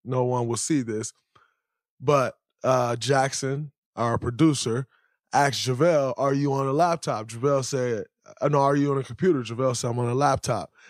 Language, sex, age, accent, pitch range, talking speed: English, male, 20-39, American, 125-155 Hz, 170 wpm